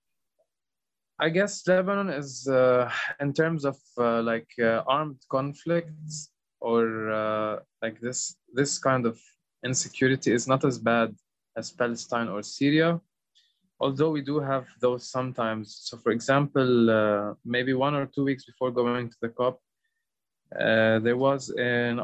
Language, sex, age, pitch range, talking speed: English, male, 20-39, 115-140 Hz, 145 wpm